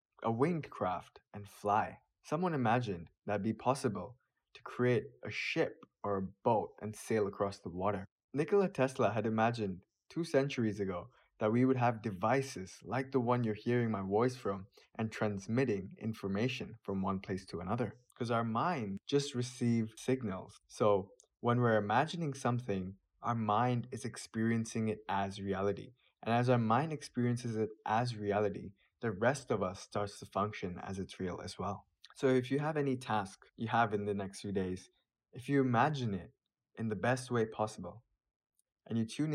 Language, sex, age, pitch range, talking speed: English, male, 20-39, 100-125 Hz, 170 wpm